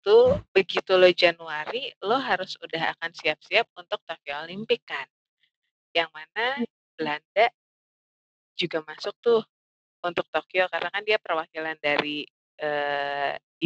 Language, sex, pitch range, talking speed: Indonesian, female, 150-195 Hz, 120 wpm